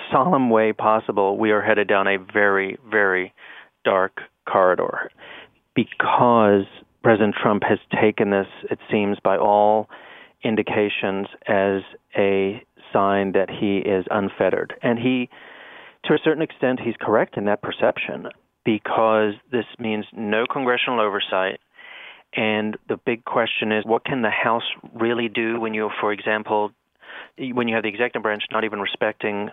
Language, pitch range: English, 105-115 Hz